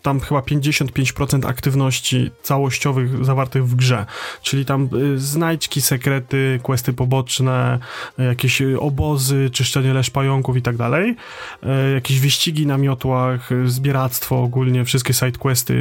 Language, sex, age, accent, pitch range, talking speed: Polish, male, 30-49, native, 130-145 Hz, 115 wpm